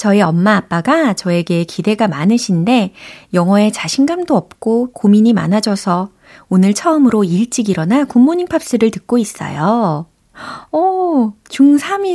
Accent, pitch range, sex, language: native, 165-230 Hz, female, Korean